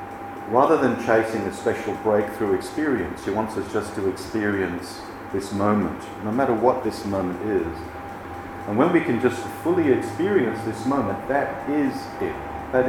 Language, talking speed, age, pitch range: English, 160 wpm, 40-59, 90-110 Hz